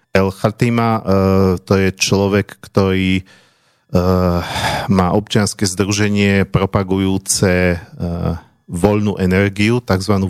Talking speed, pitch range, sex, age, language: 75 wpm, 95-105 Hz, male, 40-59, Slovak